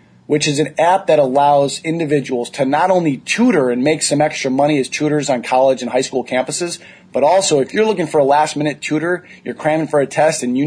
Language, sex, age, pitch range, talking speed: English, male, 30-49, 125-155 Hz, 230 wpm